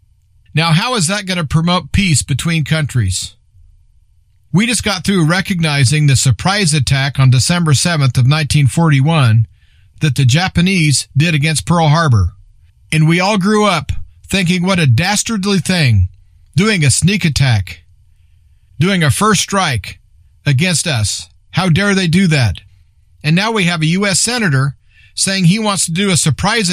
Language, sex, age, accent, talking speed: English, male, 50-69, American, 155 wpm